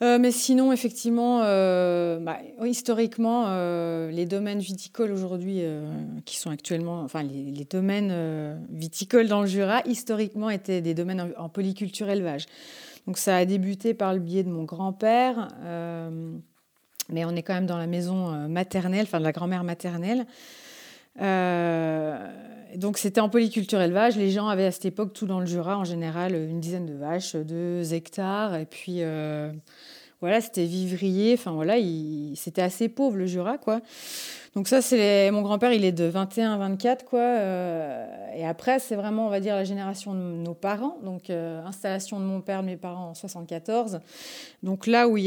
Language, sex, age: French, female, 40-59